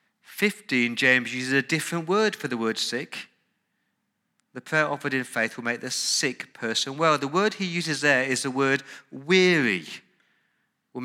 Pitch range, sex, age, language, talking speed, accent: 120-160 Hz, male, 40-59, English, 170 wpm, British